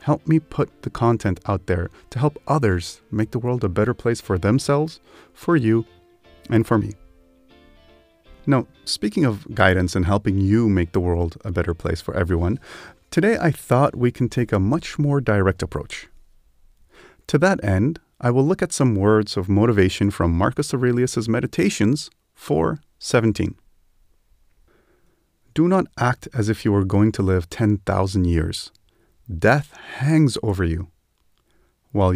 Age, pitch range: 30-49, 90-130 Hz